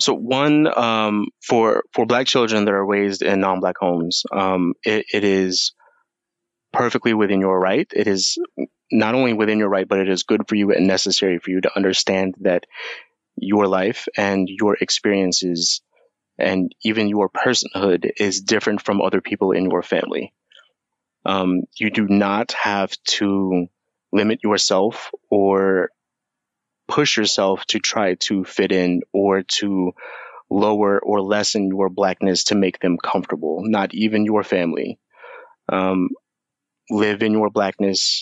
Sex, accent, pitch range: male, American, 95-105 Hz